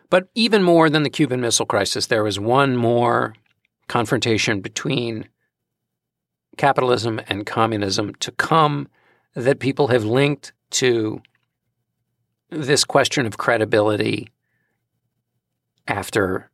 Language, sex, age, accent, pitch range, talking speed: English, male, 50-69, American, 110-140 Hz, 105 wpm